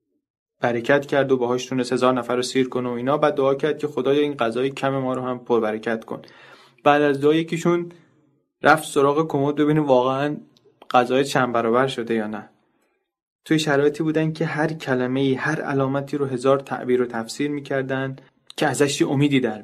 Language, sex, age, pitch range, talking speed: Persian, male, 20-39, 120-145 Hz, 175 wpm